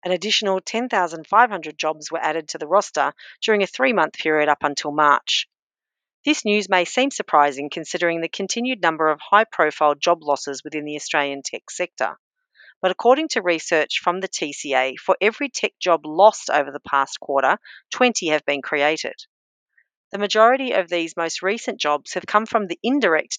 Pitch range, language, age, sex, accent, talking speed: 150-210 Hz, English, 40-59, female, Australian, 170 wpm